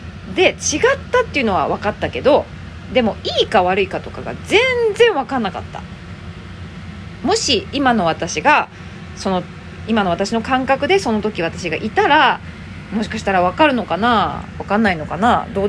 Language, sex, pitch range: Japanese, female, 170-270 Hz